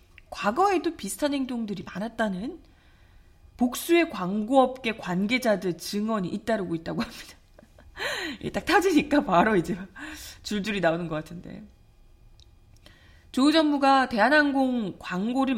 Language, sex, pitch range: Korean, female, 175-280 Hz